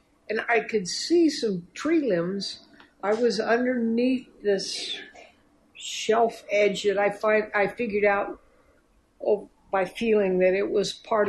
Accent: American